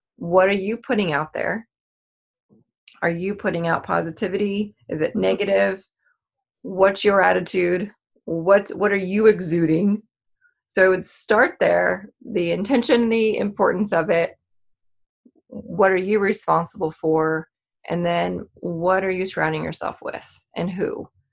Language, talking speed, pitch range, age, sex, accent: English, 135 wpm, 170-205 Hz, 30-49, female, American